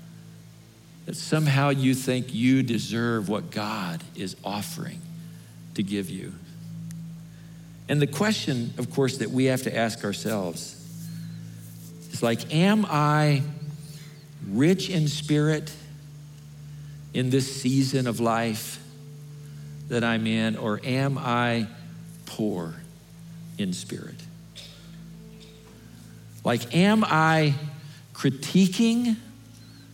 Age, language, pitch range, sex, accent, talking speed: 50-69, English, 130-165 Hz, male, American, 100 wpm